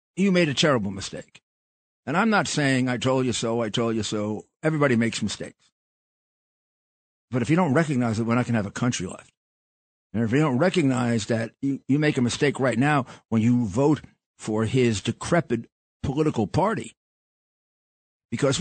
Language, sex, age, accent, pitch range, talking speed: English, male, 50-69, American, 120-175 Hz, 180 wpm